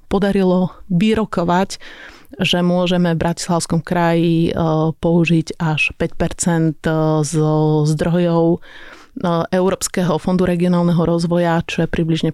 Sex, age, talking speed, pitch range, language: female, 30-49, 90 wpm, 165-180 Hz, Slovak